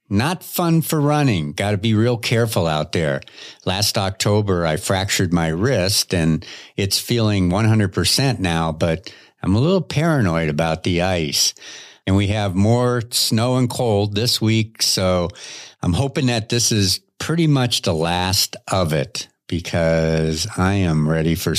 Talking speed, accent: 155 wpm, American